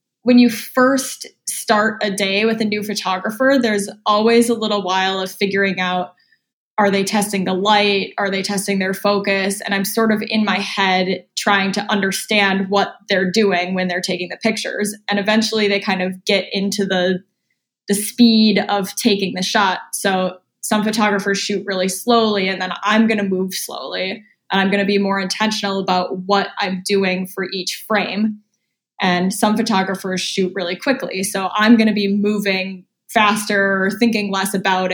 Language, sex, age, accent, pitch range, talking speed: English, female, 10-29, American, 190-220 Hz, 175 wpm